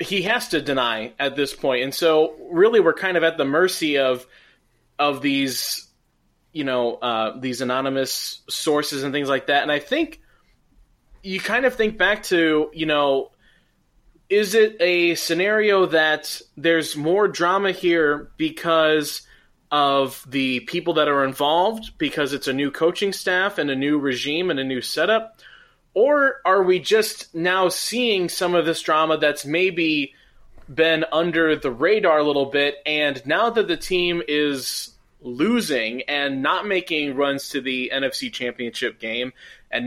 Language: English